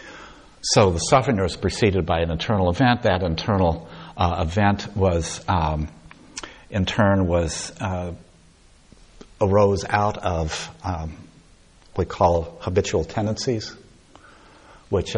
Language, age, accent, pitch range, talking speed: English, 60-79, American, 80-100 Hz, 115 wpm